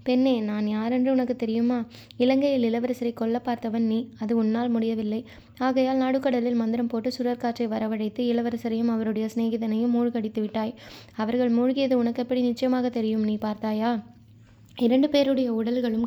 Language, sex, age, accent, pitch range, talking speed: Tamil, female, 20-39, native, 225-250 Hz, 125 wpm